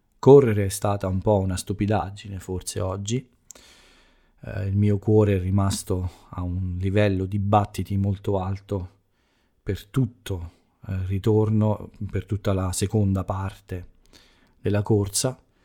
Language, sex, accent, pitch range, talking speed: Italian, male, native, 95-110 Hz, 125 wpm